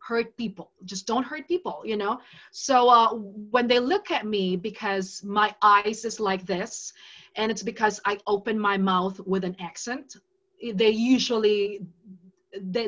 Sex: female